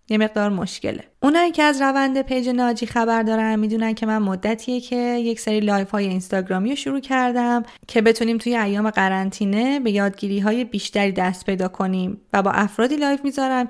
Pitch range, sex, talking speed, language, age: 205-255 Hz, female, 180 wpm, Persian, 20-39